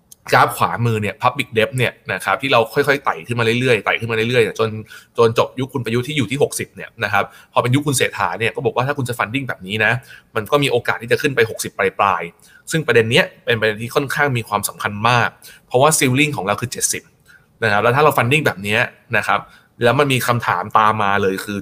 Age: 20-39